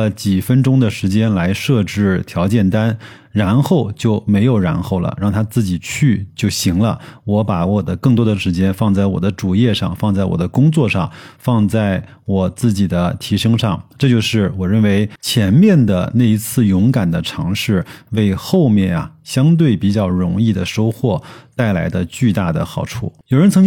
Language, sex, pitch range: Chinese, male, 100-140 Hz